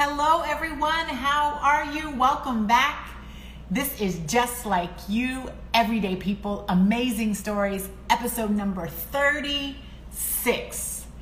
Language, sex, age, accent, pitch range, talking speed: English, female, 30-49, American, 190-245 Hz, 100 wpm